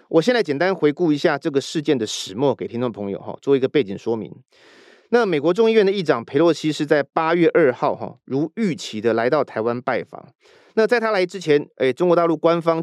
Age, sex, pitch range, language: 30-49, male, 135-185 Hz, Chinese